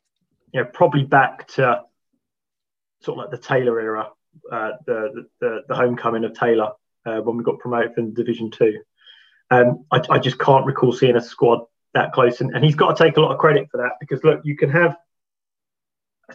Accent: British